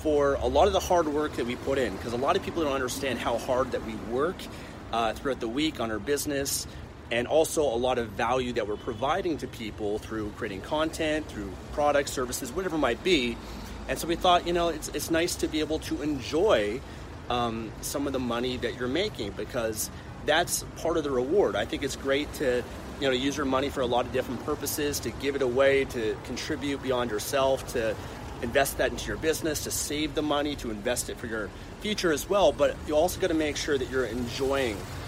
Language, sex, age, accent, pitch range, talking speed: English, male, 30-49, American, 115-150 Hz, 220 wpm